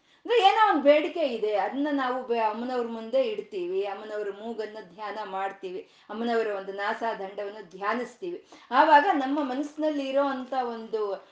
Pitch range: 220-320 Hz